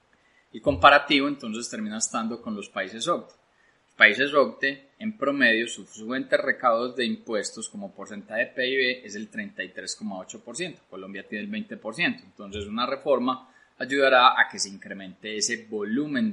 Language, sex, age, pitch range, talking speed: Spanish, male, 20-39, 110-145 Hz, 145 wpm